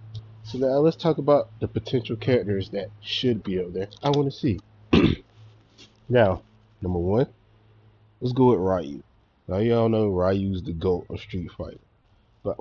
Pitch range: 95-115 Hz